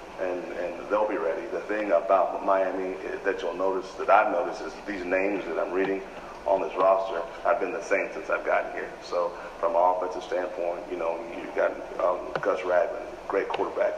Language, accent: English, American